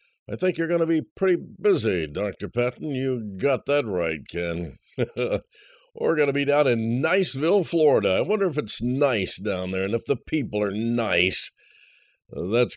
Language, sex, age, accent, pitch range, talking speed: English, male, 60-79, American, 115-150 Hz, 175 wpm